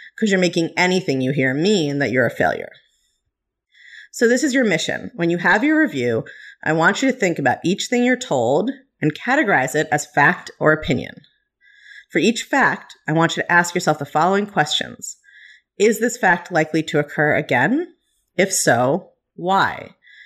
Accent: American